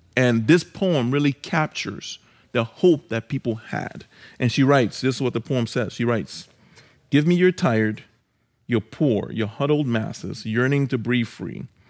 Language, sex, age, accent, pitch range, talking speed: English, male, 30-49, American, 115-155 Hz, 170 wpm